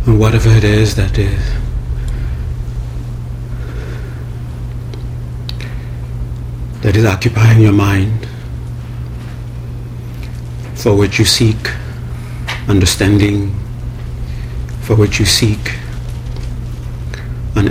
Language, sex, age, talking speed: English, male, 70-89, 70 wpm